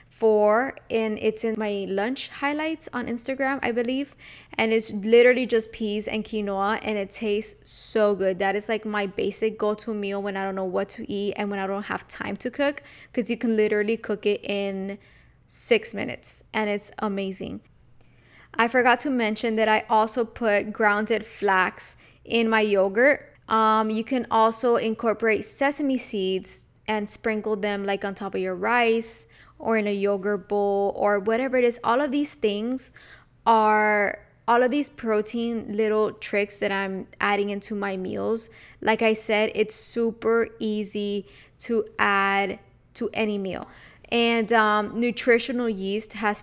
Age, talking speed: 20-39, 165 wpm